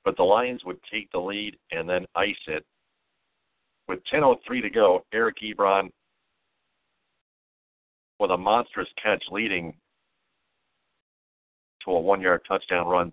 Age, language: 50-69, English